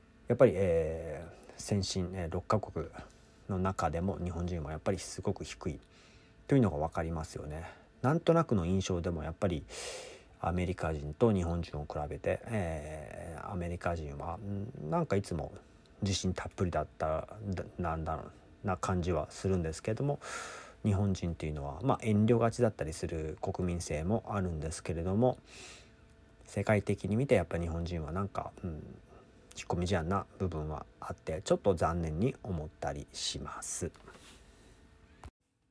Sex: male